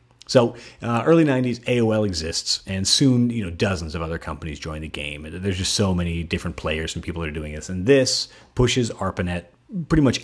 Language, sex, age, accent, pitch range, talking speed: English, male, 30-49, American, 80-110 Hz, 205 wpm